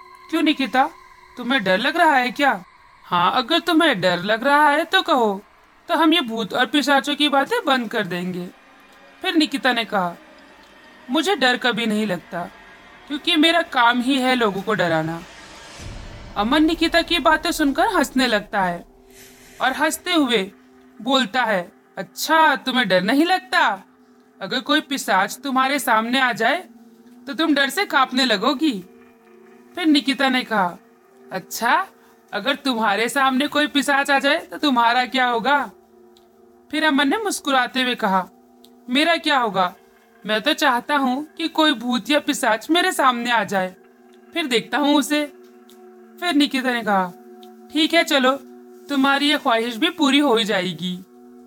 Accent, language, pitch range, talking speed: native, Hindi, 205-300 Hz, 155 wpm